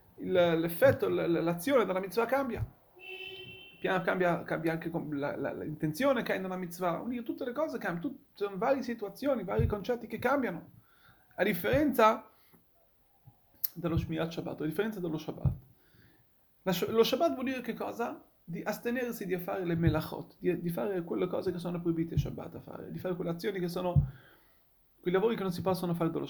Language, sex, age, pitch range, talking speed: Italian, male, 30-49, 175-245 Hz, 180 wpm